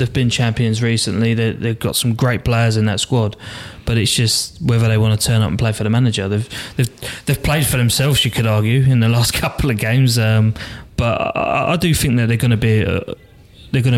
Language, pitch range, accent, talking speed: English, 110-125 Hz, British, 240 wpm